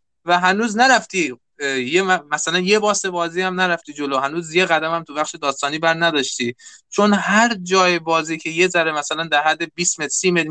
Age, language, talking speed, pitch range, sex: 20-39, Persian, 170 wpm, 140-180 Hz, male